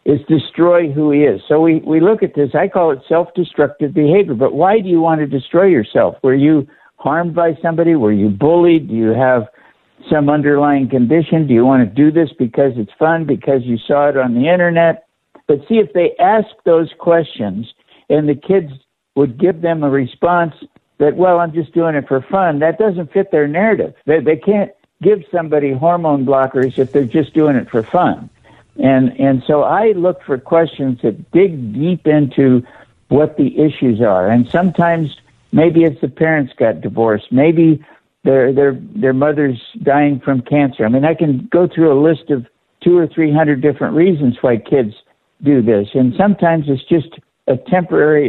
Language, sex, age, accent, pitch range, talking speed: English, male, 60-79, American, 135-170 Hz, 185 wpm